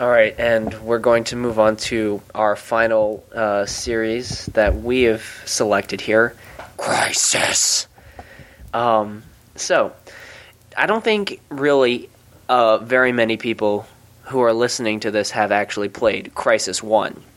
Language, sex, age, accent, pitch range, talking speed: English, male, 20-39, American, 105-120 Hz, 135 wpm